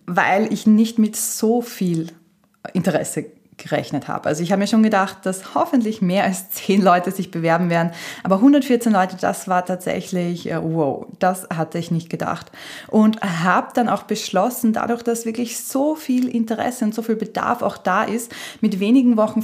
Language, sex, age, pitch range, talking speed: German, female, 20-39, 185-220 Hz, 175 wpm